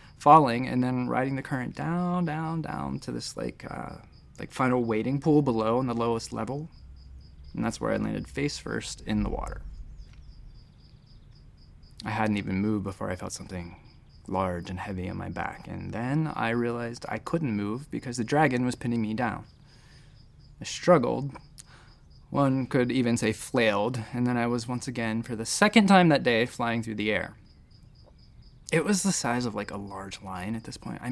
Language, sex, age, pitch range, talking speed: English, male, 20-39, 110-135 Hz, 185 wpm